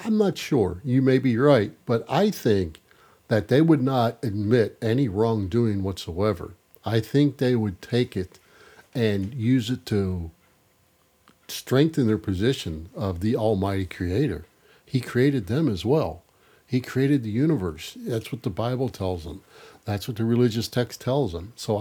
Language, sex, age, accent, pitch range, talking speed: English, male, 50-69, American, 105-145 Hz, 160 wpm